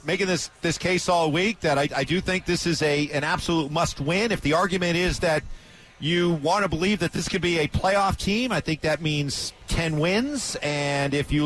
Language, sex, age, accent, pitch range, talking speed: English, male, 40-59, American, 140-195 Hz, 225 wpm